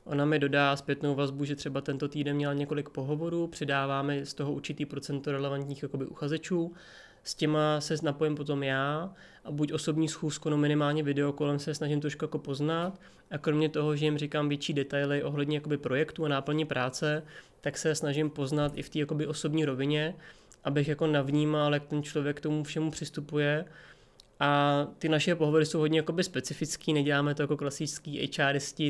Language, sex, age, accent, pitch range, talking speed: Czech, male, 20-39, native, 145-155 Hz, 175 wpm